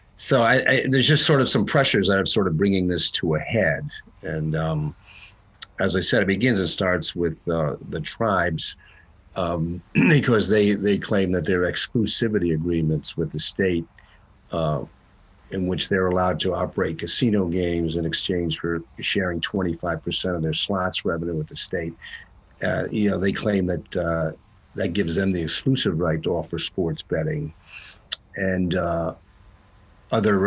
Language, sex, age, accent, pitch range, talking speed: English, male, 50-69, American, 85-105 Hz, 165 wpm